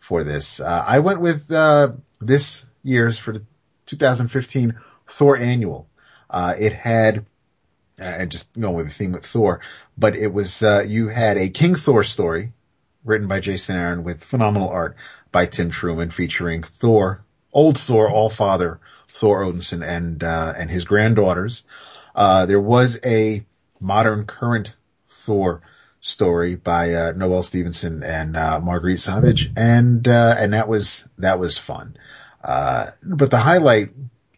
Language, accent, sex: English, American, male